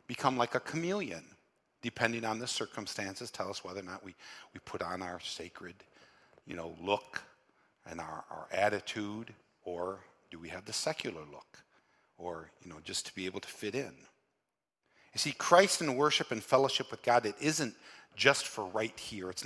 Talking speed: 180 wpm